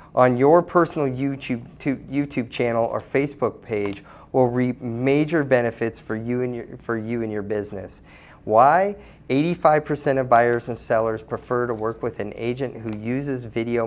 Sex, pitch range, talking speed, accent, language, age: male, 110-140 Hz, 160 wpm, American, English, 30-49